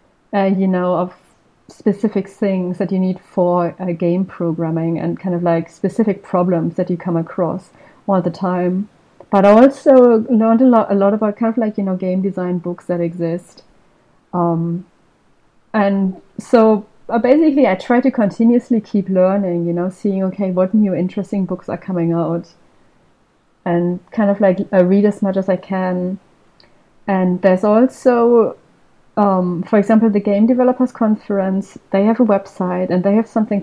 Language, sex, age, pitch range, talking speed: English, female, 30-49, 180-210 Hz, 170 wpm